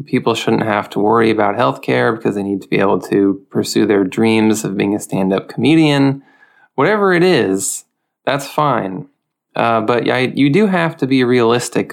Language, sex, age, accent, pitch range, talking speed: English, male, 20-39, American, 105-150 Hz, 180 wpm